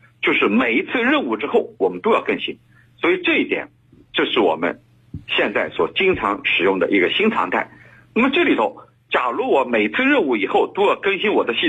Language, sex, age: Chinese, male, 50-69